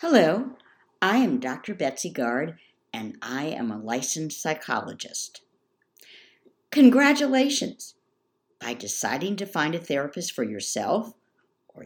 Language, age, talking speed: English, 60-79, 110 wpm